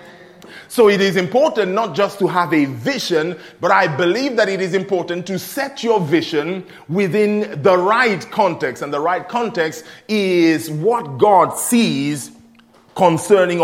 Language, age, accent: English, 30-49, Nigerian